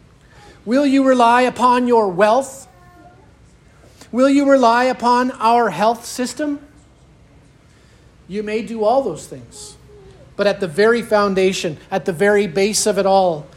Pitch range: 170-220 Hz